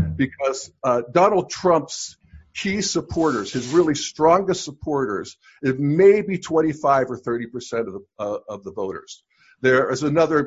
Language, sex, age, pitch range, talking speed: English, male, 50-69, 125-180 Hz, 140 wpm